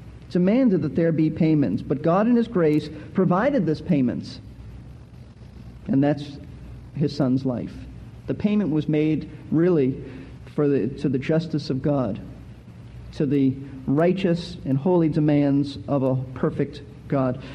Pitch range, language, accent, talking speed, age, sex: 145-200 Hz, English, American, 135 wpm, 50-69, male